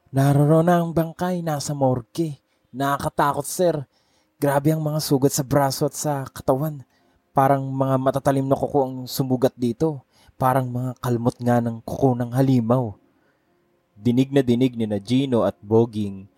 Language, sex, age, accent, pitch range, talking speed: English, male, 20-39, Filipino, 105-135 Hz, 145 wpm